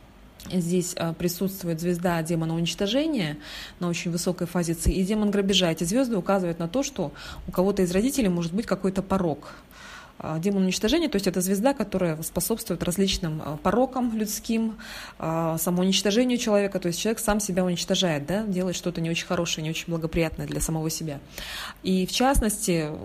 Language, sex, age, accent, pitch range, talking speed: Russian, female, 20-39, native, 165-200 Hz, 155 wpm